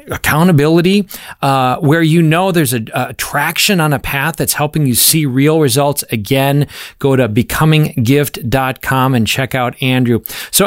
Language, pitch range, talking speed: English, 125-150 Hz, 150 wpm